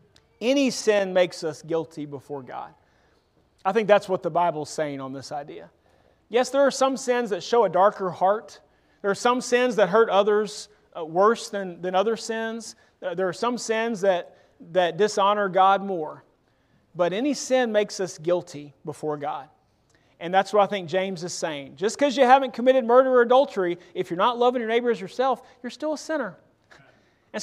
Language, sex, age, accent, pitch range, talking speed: English, male, 40-59, American, 165-230 Hz, 185 wpm